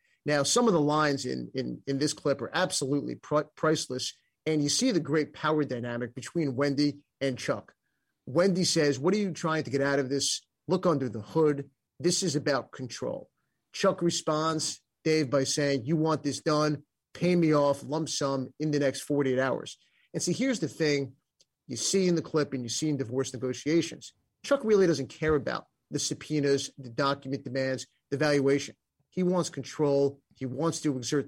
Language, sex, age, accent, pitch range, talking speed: English, male, 30-49, American, 135-160 Hz, 190 wpm